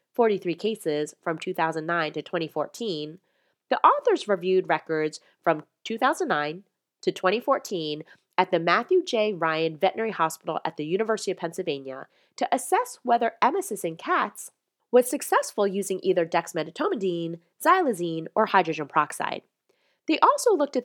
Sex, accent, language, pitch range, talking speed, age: female, American, English, 160-220 Hz, 130 wpm, 30-49